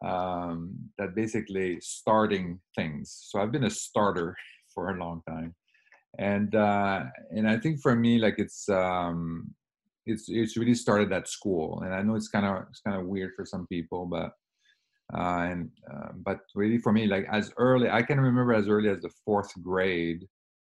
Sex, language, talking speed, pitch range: male, English, 180 wpm, 85-105 Hz